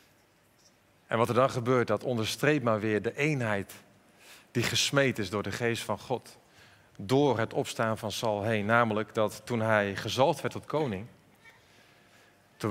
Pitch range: 110-145 Hz